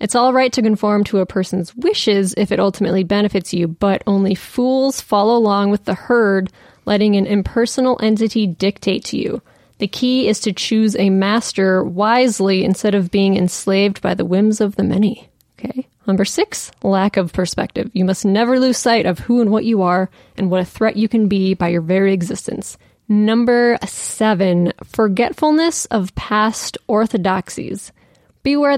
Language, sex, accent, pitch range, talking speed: English, female, American, 195-230 Hz, 170 wpm